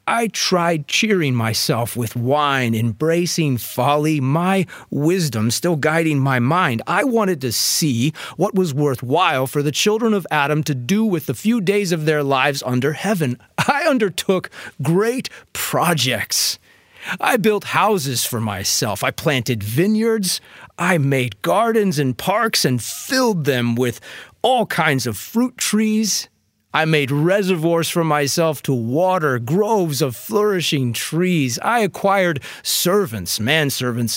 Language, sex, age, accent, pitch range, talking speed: English, male, 30-49, American, 125-185 Hz, 135 wpm